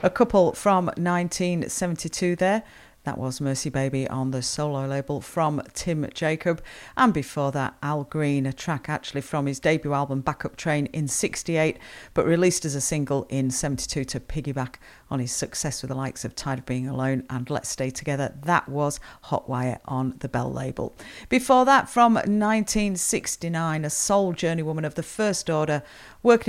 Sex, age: female, 40-59